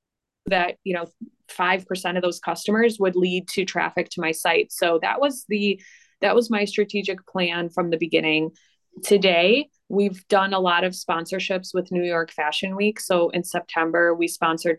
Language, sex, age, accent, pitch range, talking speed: English, female, 20-39, American, 175-200 Hz, 180 wpm